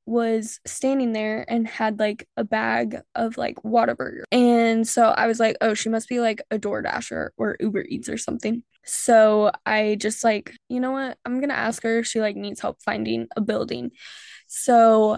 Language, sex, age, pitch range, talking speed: English, female, 10-29, 220-255 Hz, 195 wpm